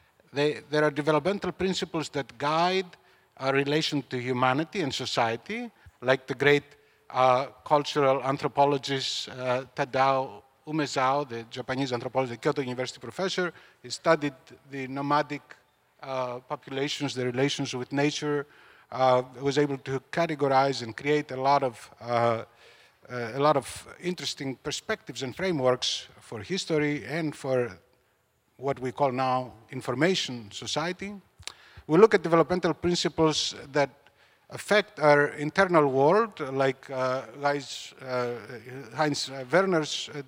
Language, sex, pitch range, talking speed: English, male, 130-155 Hz, 120 wpm